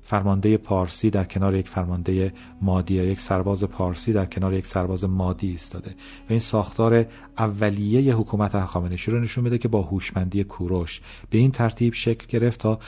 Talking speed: 165 wpm